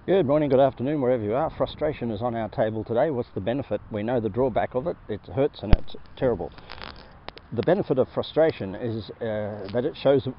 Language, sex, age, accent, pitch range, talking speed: English, male, 50-69, Australian, 110-130 Hz, 215 wpm